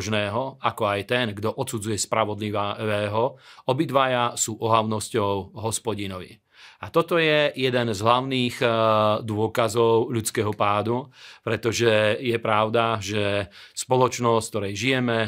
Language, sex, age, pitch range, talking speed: Slovak, male, 40-59, 110-125 Hz, 105 wpm